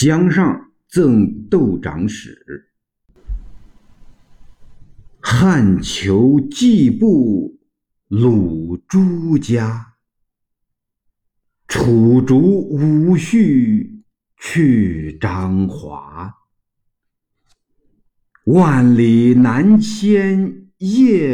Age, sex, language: 50-69, male, Chinese